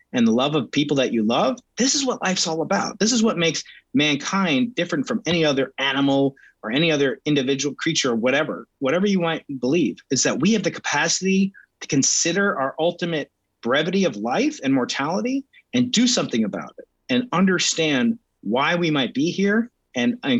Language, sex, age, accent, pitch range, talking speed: English, male, 30-49, American, 140-230 Hz, 185 wpm